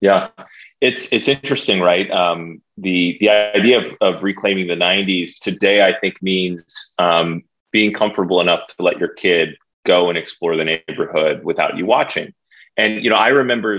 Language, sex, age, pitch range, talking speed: English, male, 30-49, 90-105 Hz, 170 wpm